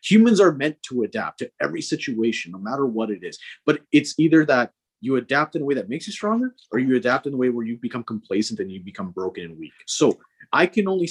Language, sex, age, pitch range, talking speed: English, male, 30-49, 115-160 Hz, 250 wpm